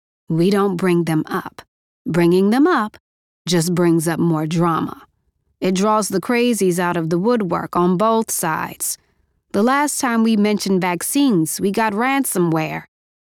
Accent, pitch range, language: American, 165-220 Hz, English